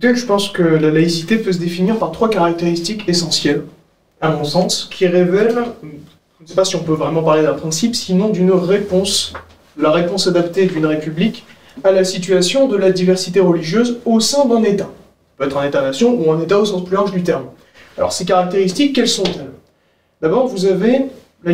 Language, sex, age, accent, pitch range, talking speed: French, male, 30-49, French, 170-230 Hz, 195 wpm